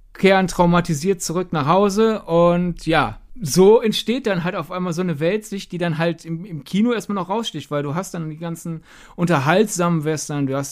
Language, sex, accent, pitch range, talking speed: German, male, German, 150-185 Hz, 195 wpm